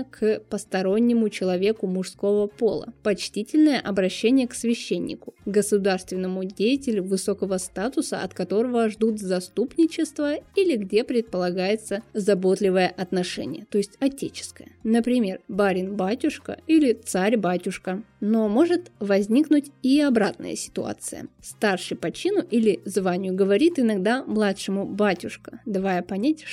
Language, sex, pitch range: Russian, female, 195-240 Hz